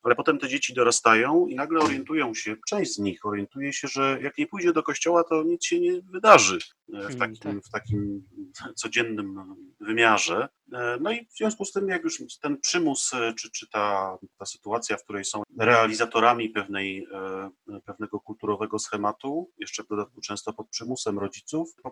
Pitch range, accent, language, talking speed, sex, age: 105-140 Hz, native, Polish, 160 wpm, male, 30-49